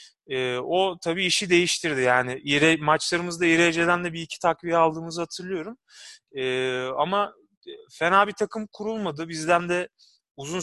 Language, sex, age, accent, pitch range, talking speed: Turkish, male, 30-49, native, 140-185 Hz, 130 wpm